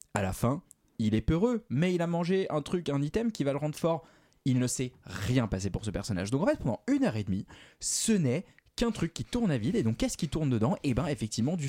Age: 20-39